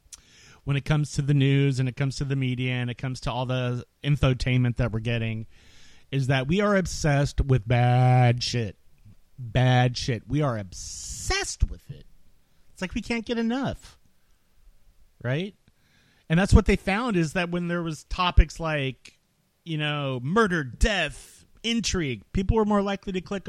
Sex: male